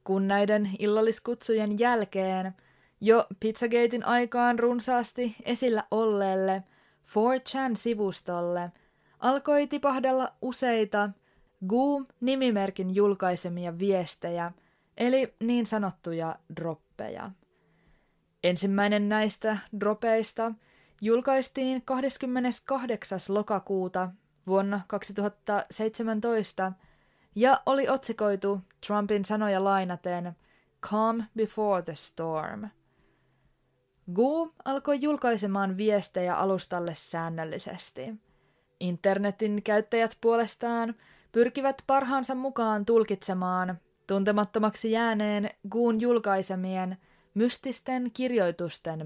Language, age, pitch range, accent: Finnish, 20-39, 190-240 Hz, native